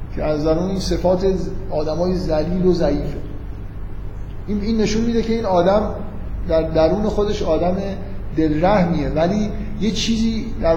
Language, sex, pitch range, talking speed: Persian, male, 140-195 Hz, 140 wpm